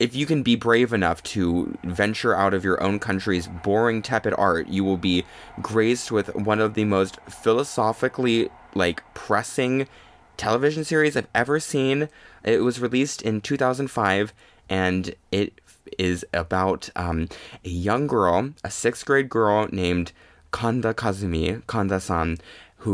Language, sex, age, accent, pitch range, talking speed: English, male, 20-39, American, 95-125 Hz, 145 wpm